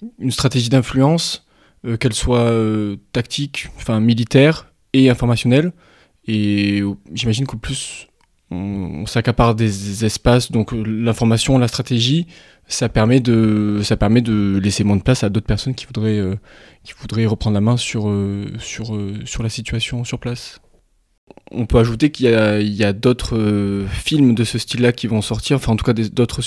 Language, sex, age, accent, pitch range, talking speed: French, male, 20-39, French, 110-125 Hz, 175 wpm